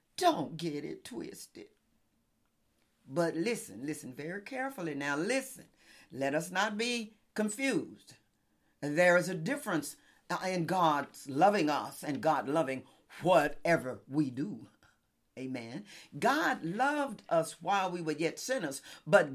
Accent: American